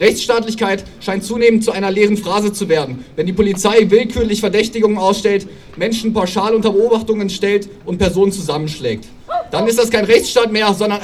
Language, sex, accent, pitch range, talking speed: German, male, German, 180-220 Hz, 165 wpm